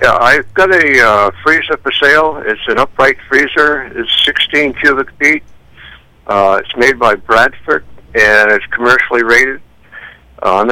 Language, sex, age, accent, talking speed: English, male, 60-79, American, 150 wpm